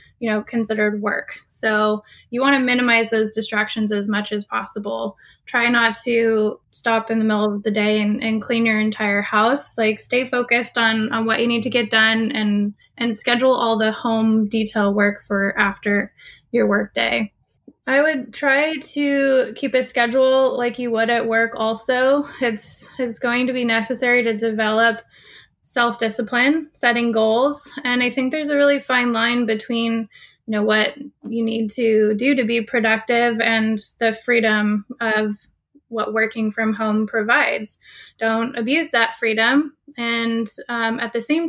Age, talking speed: 10-29, 170 wpm